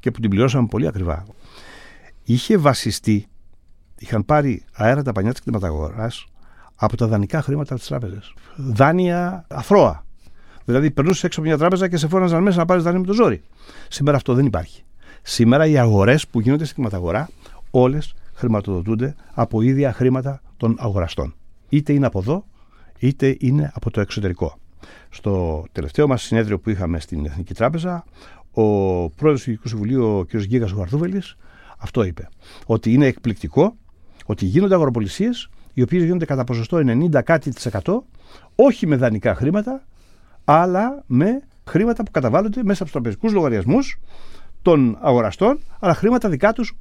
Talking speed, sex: 150 wpm, male